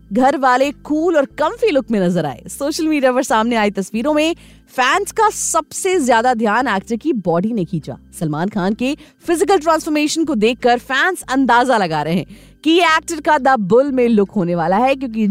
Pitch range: 205-315 Hz